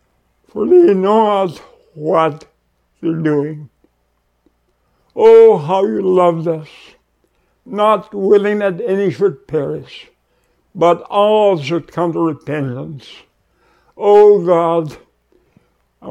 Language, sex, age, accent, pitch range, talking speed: English, male, 60-79, American, 140-185 Hz, 100 wpm